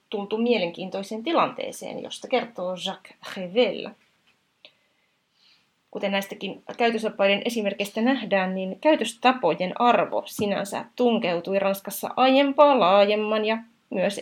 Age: 30-49